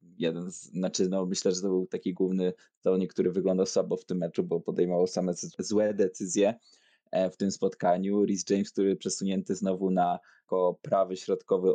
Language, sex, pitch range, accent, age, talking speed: Polish, male, 95-130 Hz, native, 20-39, 170 wpm